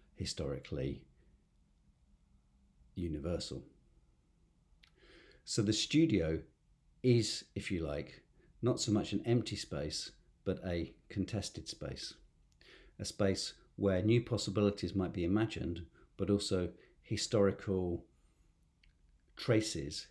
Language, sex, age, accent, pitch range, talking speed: English, male, 50-69, British, 80-105 Hz, 95 wpm